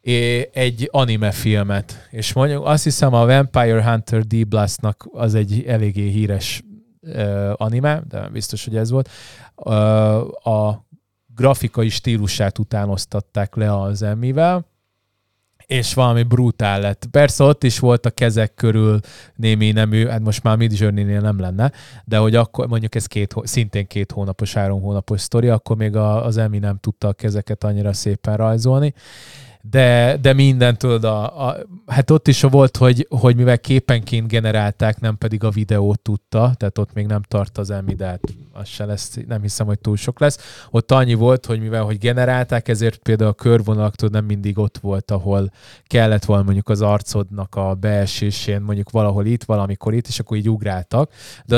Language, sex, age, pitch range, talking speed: Hungarian, male, 20-39, 105-125 Hz, 165 wpm